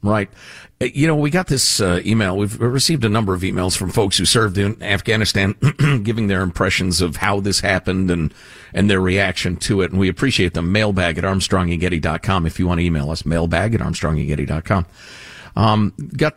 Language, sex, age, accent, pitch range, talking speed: English, male, 50-69, American, 95-125 Hz, 195 wpm